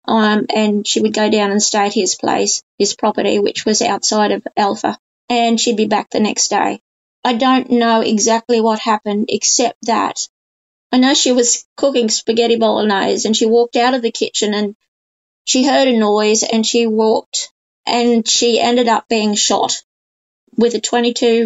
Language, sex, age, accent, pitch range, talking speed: English, female, 20-39, Australian, 220-245 Hz, 180 wpm